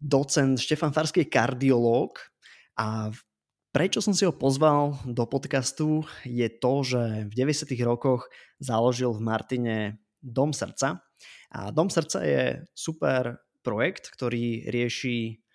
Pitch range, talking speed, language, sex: 115-135 Hz, 125 wpm, Slovak, male